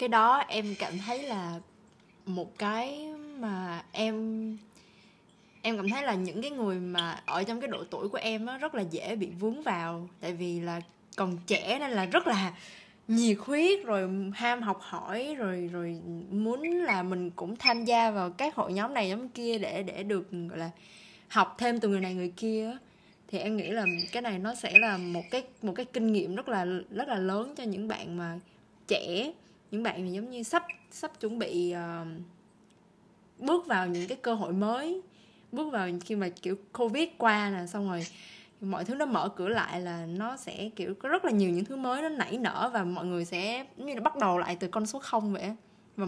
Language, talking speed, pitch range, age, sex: Vietnamese, 210 wpm, 185-230 Hz, 20-39, female